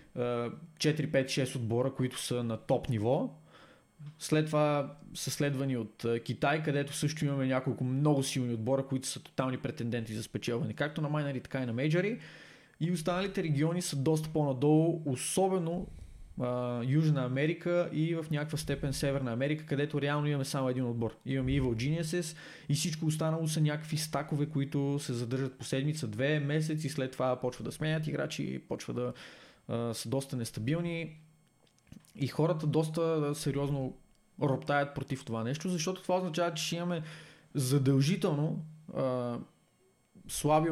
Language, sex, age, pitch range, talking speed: Bulgarian, male, 20-39, 130-155 Hz, 145 wpm